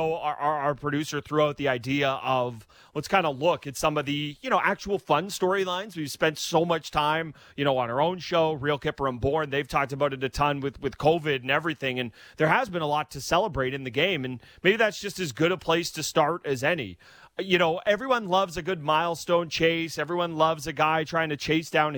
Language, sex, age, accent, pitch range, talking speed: English, male, 30-49, American, 135-170 Hz, 240 wpm